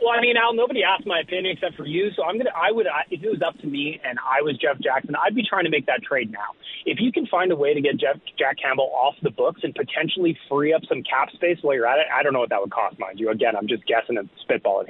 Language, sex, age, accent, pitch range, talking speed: English, male, 30-49, American, 145-195 Hz, 305 wpm